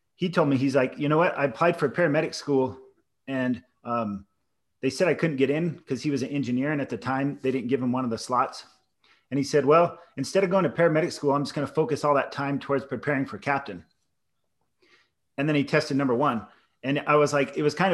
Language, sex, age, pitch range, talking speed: English, male, 30-49, 130-155 Hz, 245 wpm